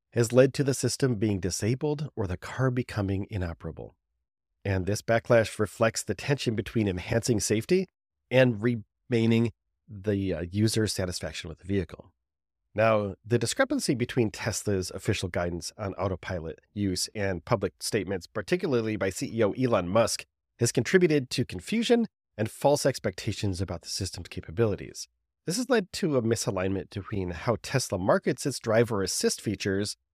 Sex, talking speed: male, 145 wpm